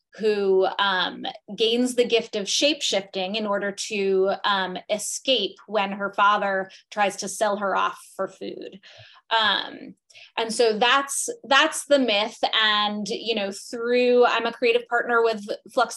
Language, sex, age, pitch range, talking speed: English, female, 20-39, 200-235 Hz, 150 wpm